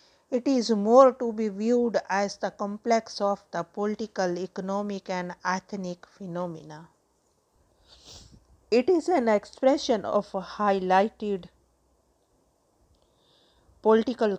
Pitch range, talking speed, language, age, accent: 175-205 Hz, 95 wpm, English, 50-69, Indian